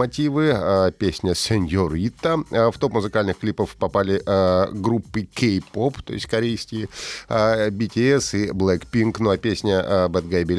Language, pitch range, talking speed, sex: Russian, 95-120 Hz, 135 wpm, male